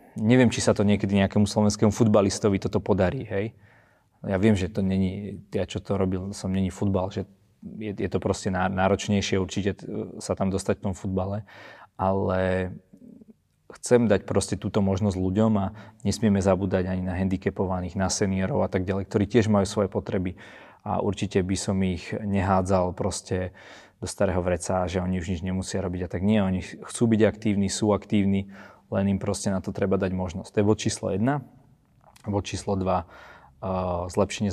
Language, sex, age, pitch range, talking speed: Slovak, male, 20-39, 95-105 Hz, 175 wpm